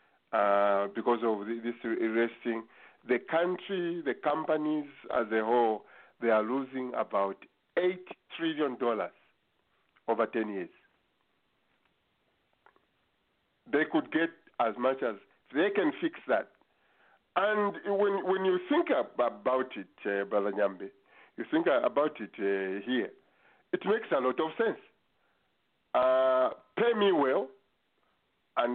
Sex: male